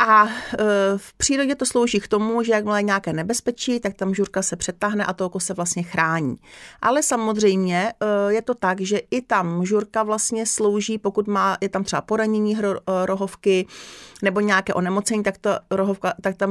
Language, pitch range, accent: Czech, 190-220 Hz, native